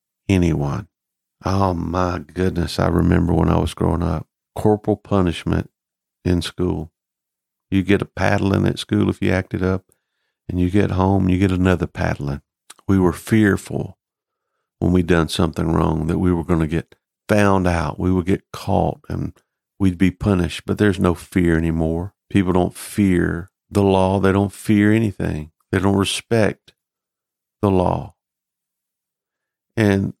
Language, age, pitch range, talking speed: English, 50-69, 85-100 Hz, 155 wpm